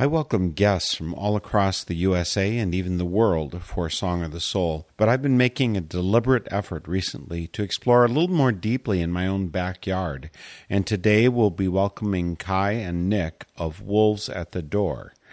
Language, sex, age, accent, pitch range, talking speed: English, male, 50-69, American, 90-110 Hz, 190 wpm